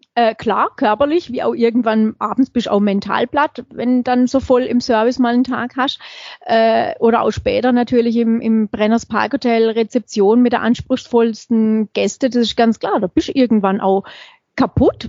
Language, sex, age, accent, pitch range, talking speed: German, female, 30-49, German, 220-260 Hz, 185 wpm